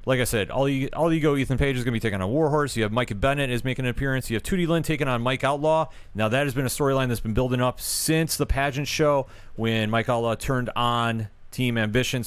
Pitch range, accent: 110-130 Hz, American